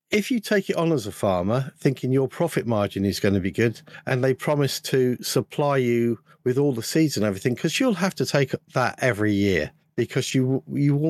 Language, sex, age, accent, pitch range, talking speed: English, male, 50-69, British, 115-155 Hz, 215 wpm